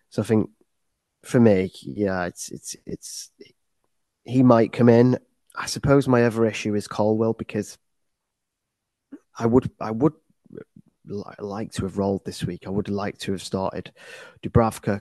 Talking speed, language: 155 wpm, English